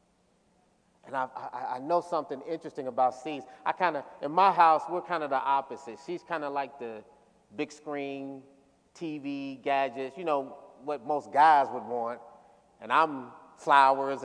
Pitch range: 140-195 Hz